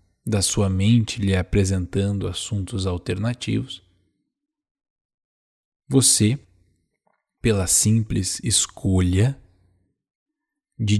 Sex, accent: male, Brazilian